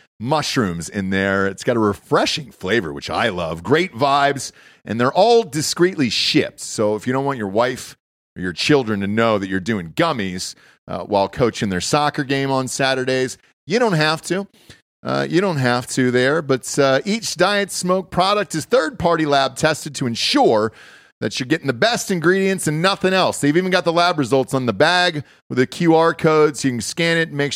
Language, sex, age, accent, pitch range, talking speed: English, male, 40-59, American, 110-160 Hz, 200 wpm